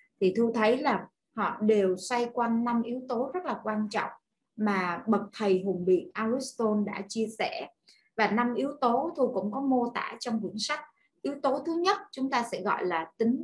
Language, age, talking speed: Vietnamese, 20-39, 205 wpm